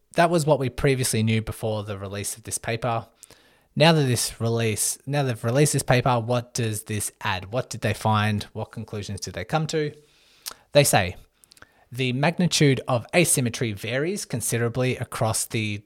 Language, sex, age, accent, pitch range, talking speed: English, male, 20-39, Australian, 105-130 Hz, 170 wpm